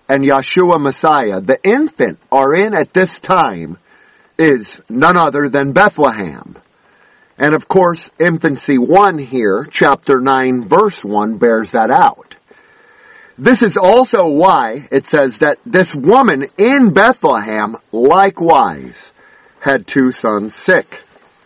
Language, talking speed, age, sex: English, 125 wpm, 50-69, male